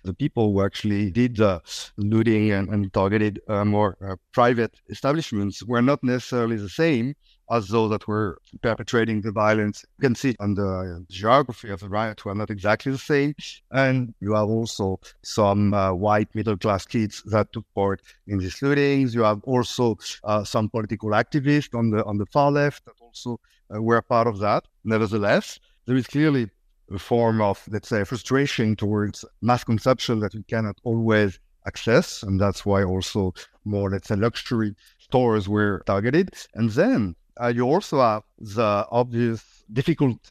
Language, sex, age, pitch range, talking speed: English, male, 50-69, 105-120 Hz, 175 wpm